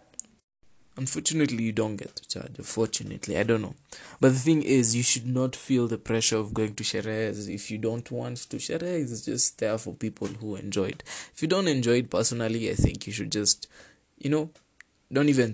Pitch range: 110-150 Hz